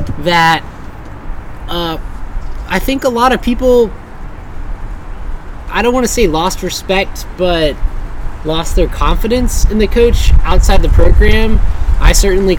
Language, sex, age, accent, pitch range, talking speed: English, male, 20-39, American, 120-175 Hz, 130 wpm